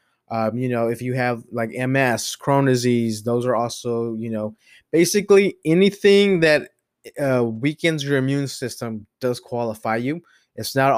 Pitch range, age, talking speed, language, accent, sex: 120-145 Hz, 20-39, 155 wpm, English, American, male